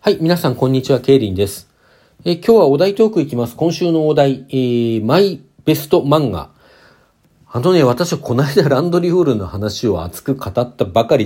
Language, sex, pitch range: Japanese, male, 100-145 Hz